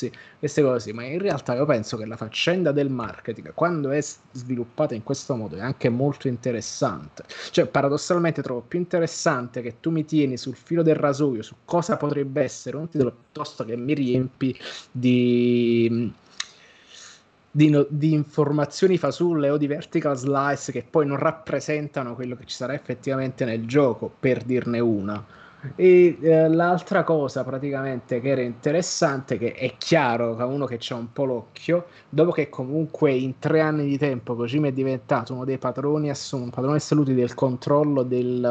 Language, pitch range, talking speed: Italian, 125-155 Hz, 165 wpm